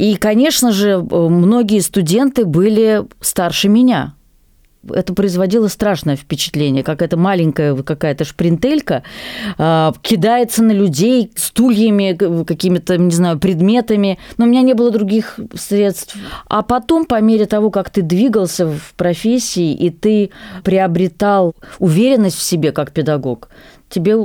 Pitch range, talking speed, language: 160-215 Hz, 125 wpm, Russian